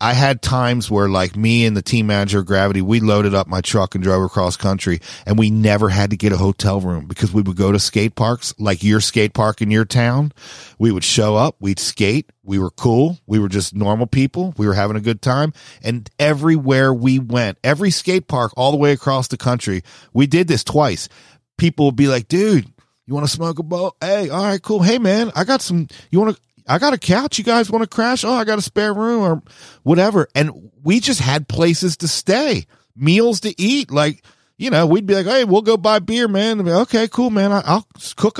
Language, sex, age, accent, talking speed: English, male, 40-59, American, 240 wpm